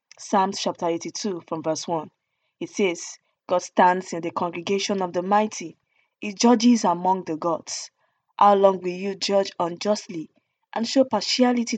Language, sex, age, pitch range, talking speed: English, female, 20-39, 170-215 Hz, 155 wpm